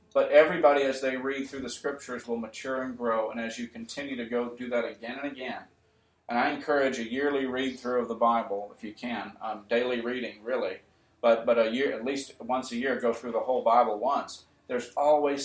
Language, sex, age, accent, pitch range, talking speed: English, male, 40-59, American, 120-150 Hz, 220 wpm